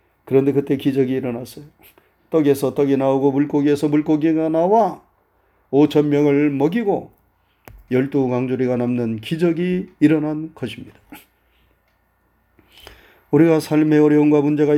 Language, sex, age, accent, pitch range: Korean, male, 30-49, native, 135-195 Hz